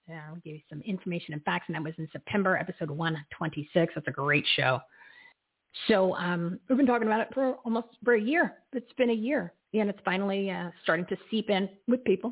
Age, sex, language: 40-59, female, English